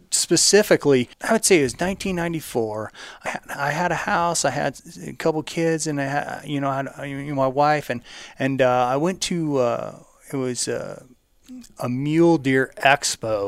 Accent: American